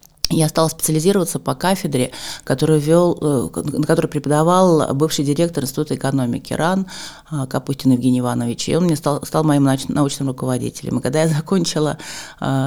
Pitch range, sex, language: 130-165 Hz, female, Russian